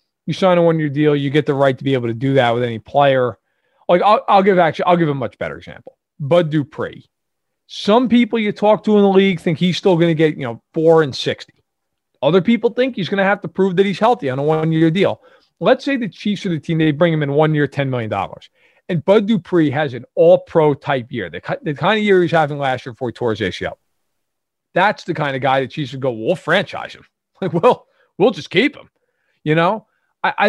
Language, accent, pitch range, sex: English, American, 135-180 Hz, male